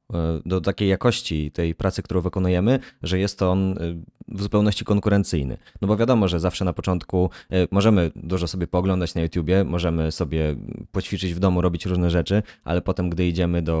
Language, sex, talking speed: Polish, male, 175 wpm